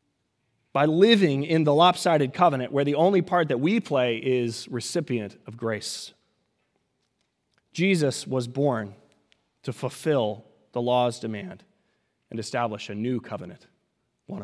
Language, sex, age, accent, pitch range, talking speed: English, male, 30-49, American, 120-160 Hz, 130 wpm